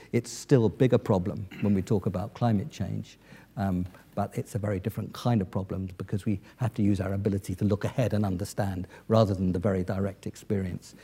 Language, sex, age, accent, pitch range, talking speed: English, male, 50-69, British, 105-130 Hz, 205 wpm